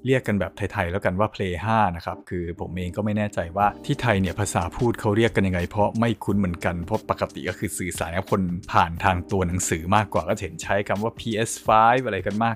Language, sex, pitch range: Thai, male, 95-110 Hz